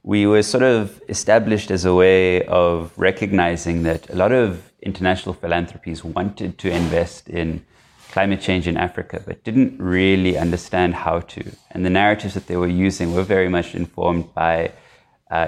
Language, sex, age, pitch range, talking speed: English, male, 20-39, 85-95 Hz, 165 wpm